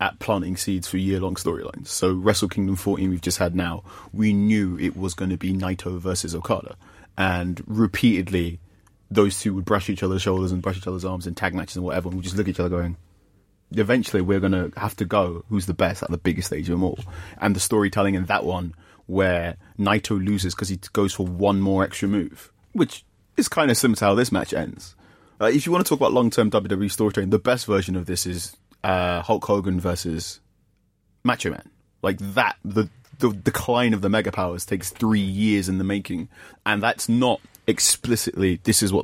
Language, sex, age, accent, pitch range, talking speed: English, male, 30-49, British, 90-105 Hz, 215 wpm